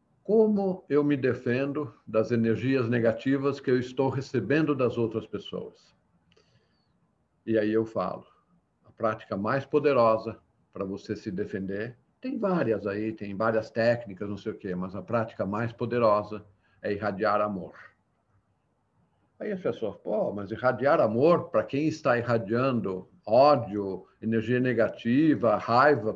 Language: Portuguese